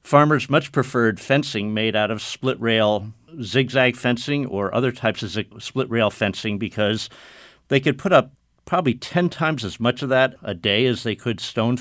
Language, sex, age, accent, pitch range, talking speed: English, male, 50-69, American, 110-135 Hz, 185 wpm